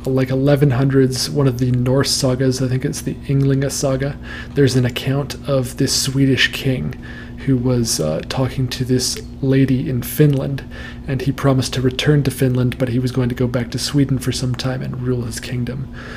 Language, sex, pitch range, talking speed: English, male, 125-135 Hz, 195 wpm